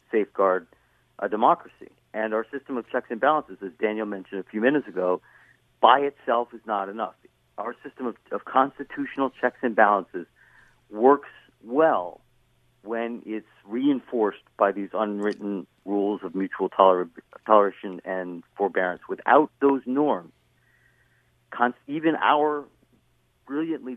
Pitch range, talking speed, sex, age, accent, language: 95-125 Hz, 125 wpm, male, 50-69, American, English